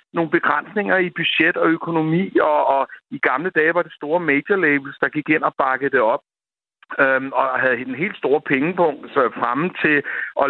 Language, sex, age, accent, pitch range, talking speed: Danish, male, 60-79, native, 130-175 Hz, 195 wpm